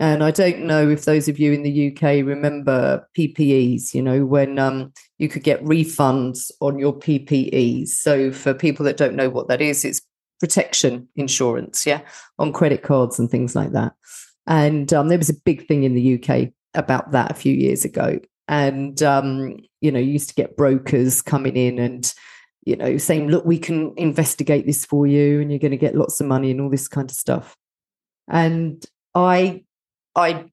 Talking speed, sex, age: 195 wpm, female, 40-59